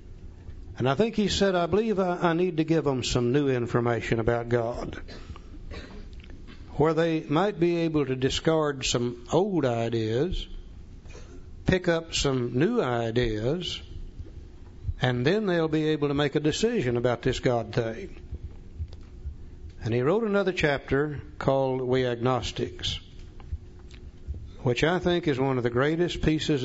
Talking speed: 140 wpm